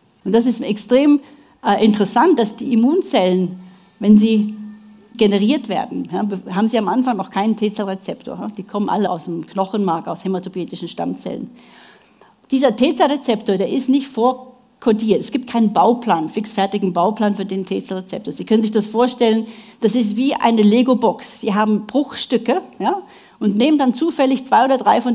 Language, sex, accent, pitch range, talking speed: English, female, German, 200-245 Hz, 160 wpm